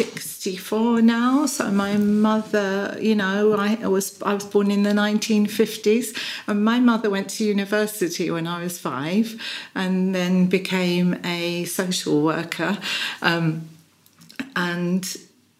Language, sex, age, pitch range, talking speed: Slovak, female, 50-69, 185-220 Hz, 125 wpm